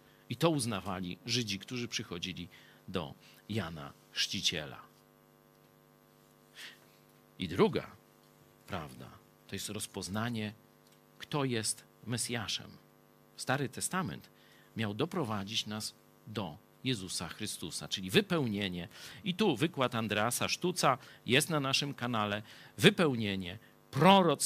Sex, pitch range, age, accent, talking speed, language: male, 105-145 Hz, 50-69, native, 95 wpm, Polish